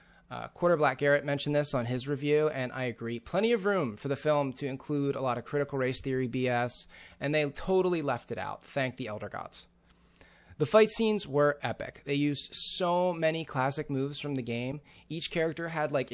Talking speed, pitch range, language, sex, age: 205 wpm, 125-155 Hz, English, male, 20-39